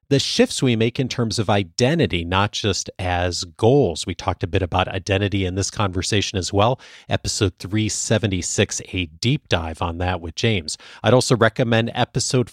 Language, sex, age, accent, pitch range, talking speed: English, male, 40-59, American, 95-130 Hz, 170 wpm